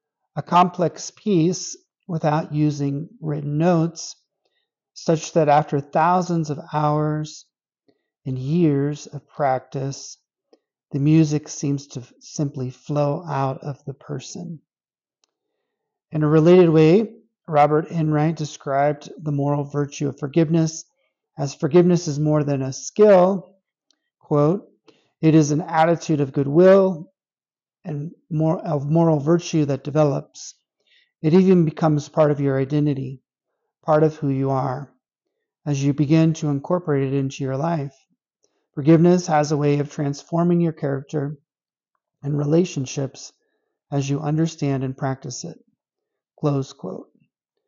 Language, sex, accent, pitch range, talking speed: English, male, American, 145-170 Hz, 125 wpm